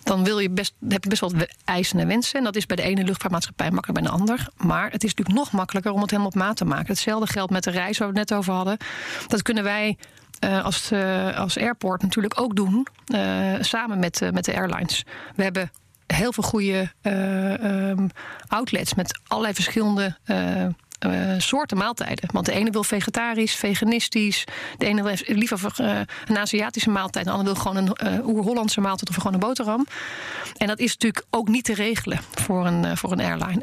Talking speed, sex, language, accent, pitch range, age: 195 wpm, female, English, Dutch, 190-220 Hz, 30-49